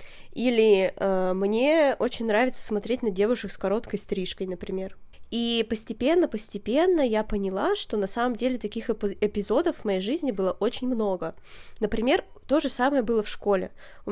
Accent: native